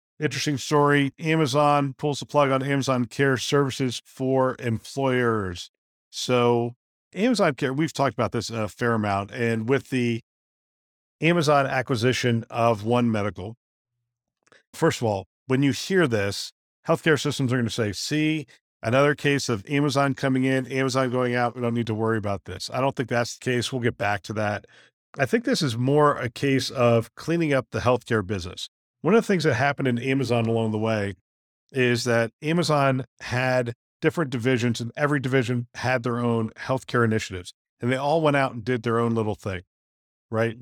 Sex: male